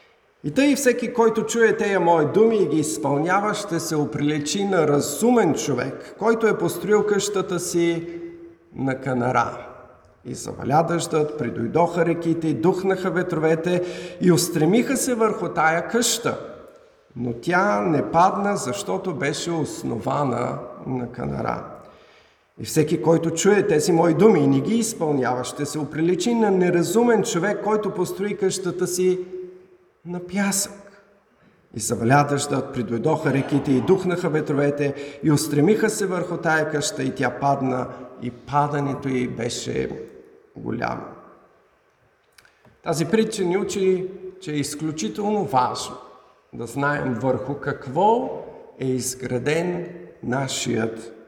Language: Bulgarian